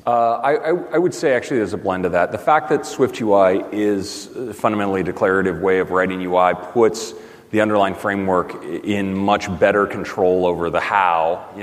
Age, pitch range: 30-49, 90-105 Hz